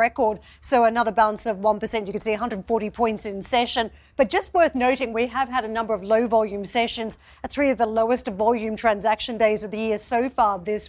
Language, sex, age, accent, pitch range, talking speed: English, female, 40-59, Australian, 220-255 Hz, 220 wpm